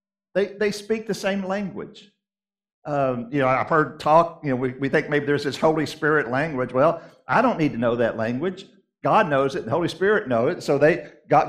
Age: 50-69